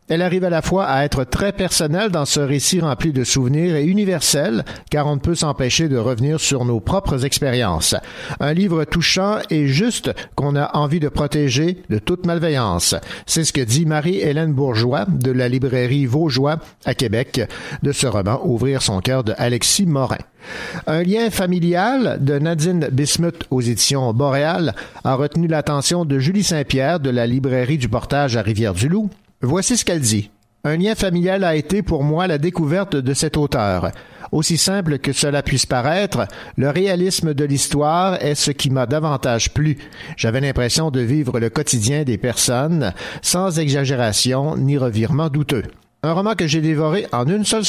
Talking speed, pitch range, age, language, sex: 175 wpm, 130-170 Hz, 50-69, French, male